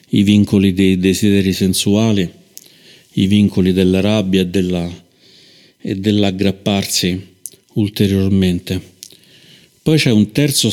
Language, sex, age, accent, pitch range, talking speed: Italian, male, 50-69, native, 95-110 Hz, 100 wpm